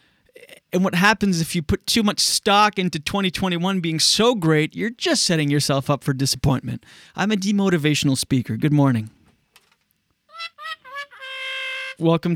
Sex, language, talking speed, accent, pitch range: male, English, 135 wpm, American, 140-190 Hz